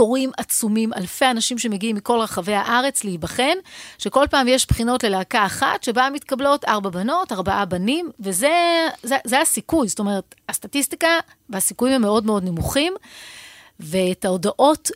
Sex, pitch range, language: female, 205-265 Hz, Hebrew